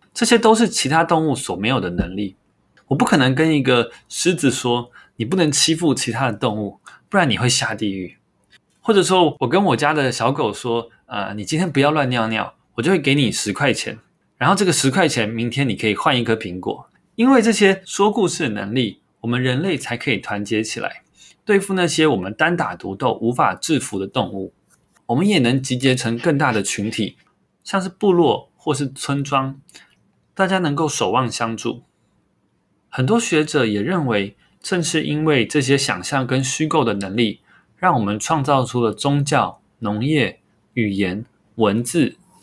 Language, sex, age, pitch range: Chinese, male, 20-39, 110-160 Hz